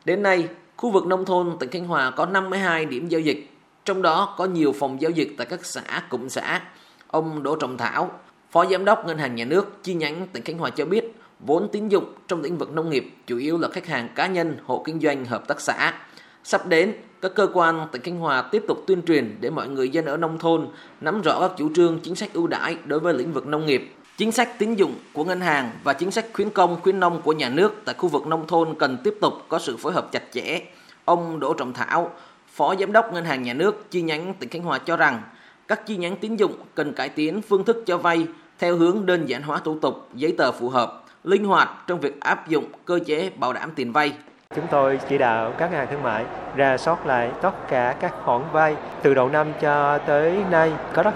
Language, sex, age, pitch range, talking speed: Vietnamese, male, 20-39, 145-180 Hz, 245 wpm